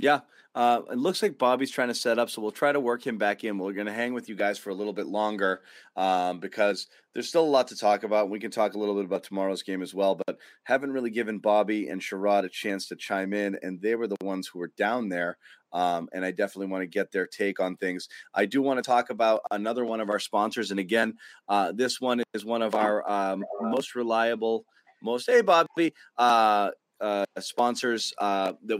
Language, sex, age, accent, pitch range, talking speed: English, male, 30-49, American, 100-120 Hz, 235 wpm